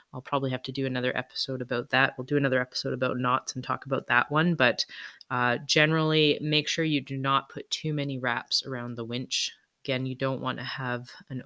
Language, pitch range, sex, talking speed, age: English, 130-155 Hz, female, 220 wpm, 20-39